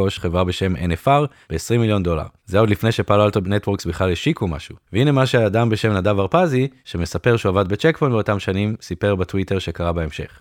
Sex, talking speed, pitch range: male, 180 wpm, 95-125 Hz